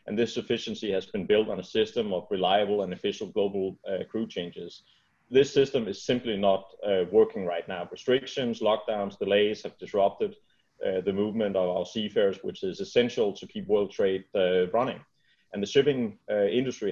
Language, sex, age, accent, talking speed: English, male, 30-49, Danish, 180 wpm